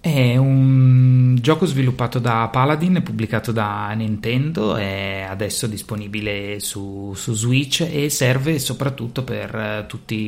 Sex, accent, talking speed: male, native, 125 wpm